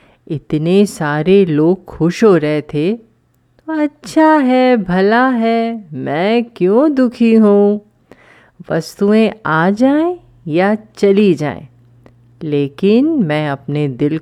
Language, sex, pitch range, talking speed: Hindi, female, 135-220 Hz, 110 wpm